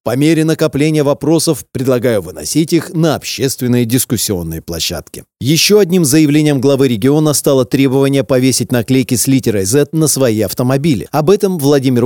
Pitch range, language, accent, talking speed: 120-160 Hz, Russian, native, 145 wpm